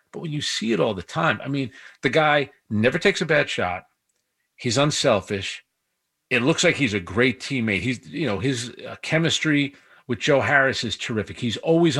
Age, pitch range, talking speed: 40-59, 120-160 Hz, 190 wpm